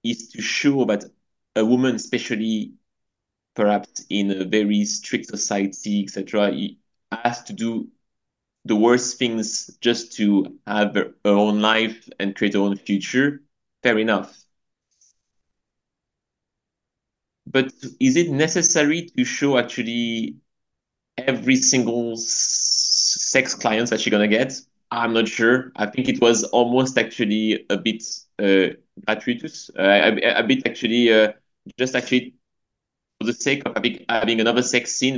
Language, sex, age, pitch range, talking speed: English, male, 30-49, 110-140 Hz, 135 wpm